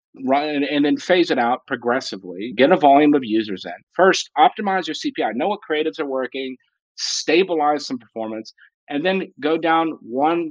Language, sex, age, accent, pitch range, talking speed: English, male, 40-59, American, 120-155 Hz, 170 wpm